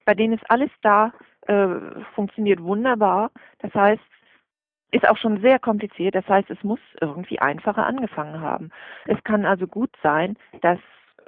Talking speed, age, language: 155 wpm, 40-59, German